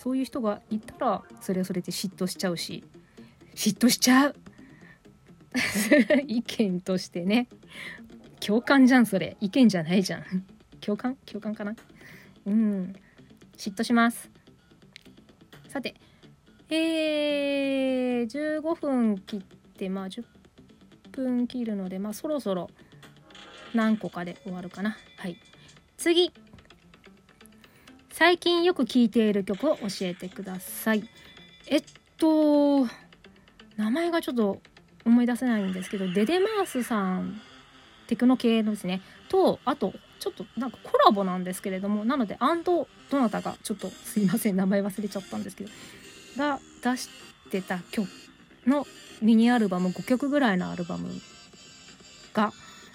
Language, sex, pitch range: Japanese, female, 190-255 Hz